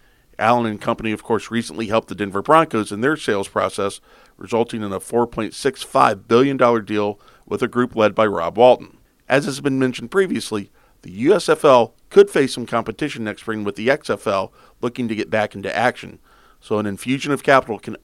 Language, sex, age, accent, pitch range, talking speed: English, male, 40-59, American, 105-135 Hz, 180 wpm